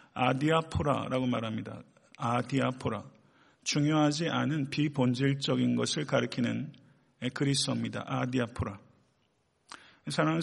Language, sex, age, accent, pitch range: Korean, male, 40-59, native, 125-150 Hz